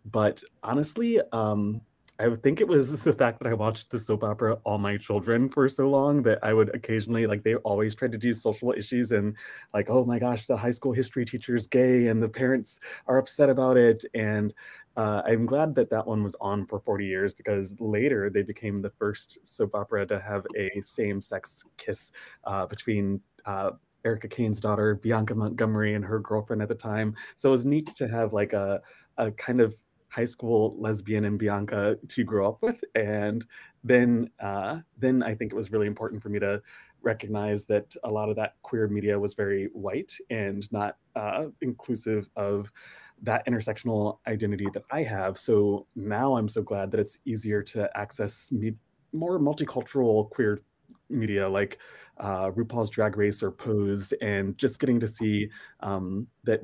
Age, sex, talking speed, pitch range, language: 20-39, male, 185 wpm, 105-120 Hz, English